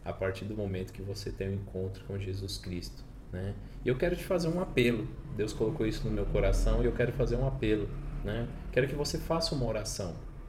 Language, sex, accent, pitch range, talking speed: Portuguese, male, Brazilian, 100-135 Hz, 215 wpm